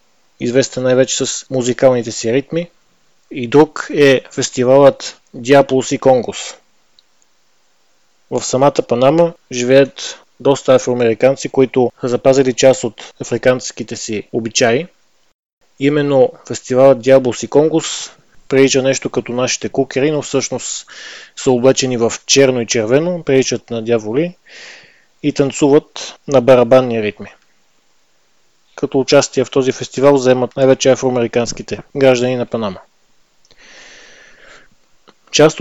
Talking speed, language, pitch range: 110 wpm, Bulgarian, 125-140 Hz